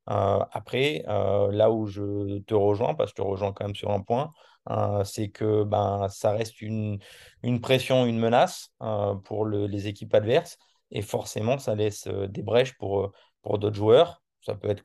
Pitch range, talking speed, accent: 105-115 Hz, 200 wpm, French